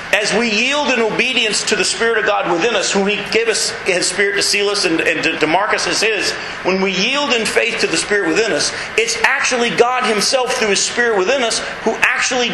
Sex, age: male, 40-59